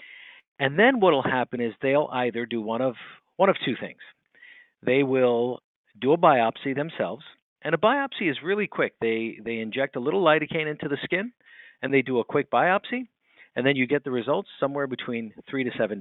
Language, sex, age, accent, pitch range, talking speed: English, male, 50-69, American, 120-155 Hz, 195 wpm